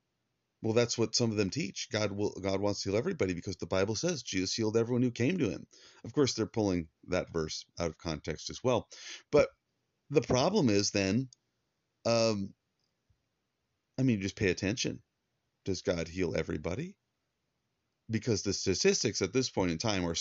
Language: English